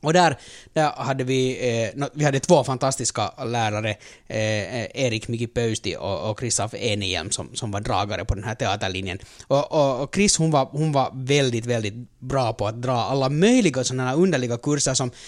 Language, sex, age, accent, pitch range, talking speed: Finnish, male, 30-49, native, 125-165 Hz, 190 wpm